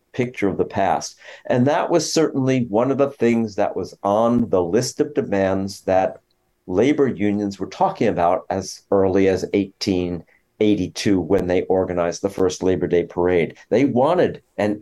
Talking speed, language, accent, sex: 160 wpm, English, American, male